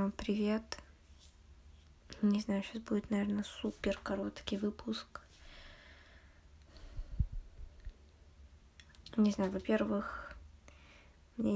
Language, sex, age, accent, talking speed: Russian, female, 20-39, native, 65 wpm